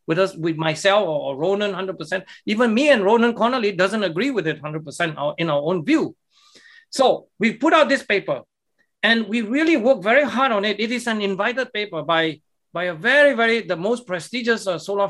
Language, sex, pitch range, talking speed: English, male, 175-230 Hz, 205 wpm